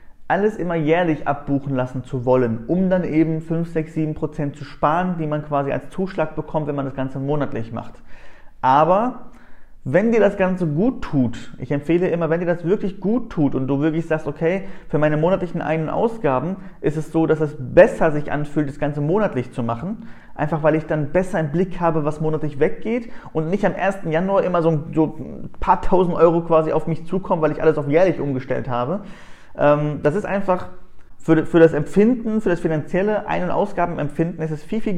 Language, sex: German, male